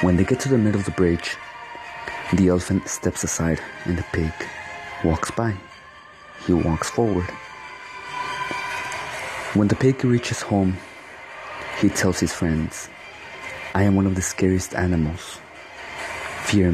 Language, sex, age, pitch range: English, male, 30-49, 85-100 Hz